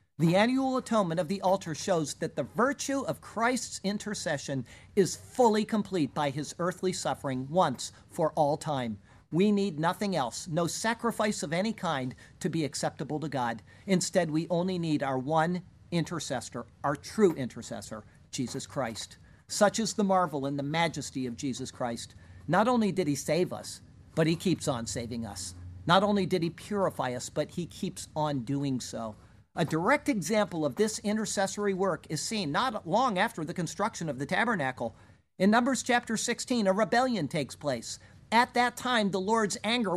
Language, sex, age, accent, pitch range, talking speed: English, male, 50-69, American, 140-210 Hz, 175 wpm